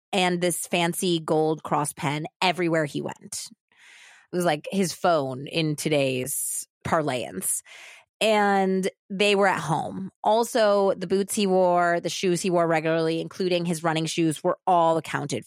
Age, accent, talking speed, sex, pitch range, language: 20-39, American, 150 wpm, female, 155-190 Hz, English